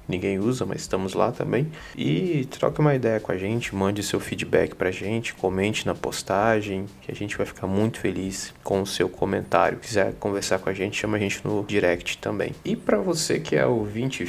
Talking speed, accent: 205 wpm, Brazilian